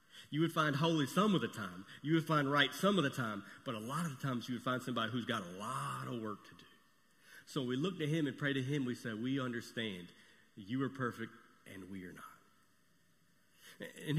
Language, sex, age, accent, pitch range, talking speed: English, male, 40-59, American, 120-160 Hz, 235 wpm